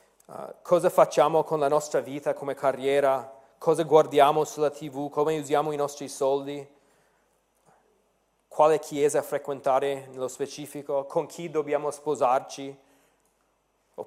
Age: 30-49